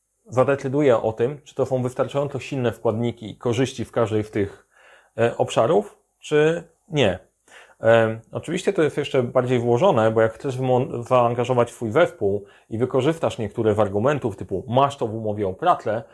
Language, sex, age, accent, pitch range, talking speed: Polish, male, 30-49, native, 110-135 Hz, 155 wpm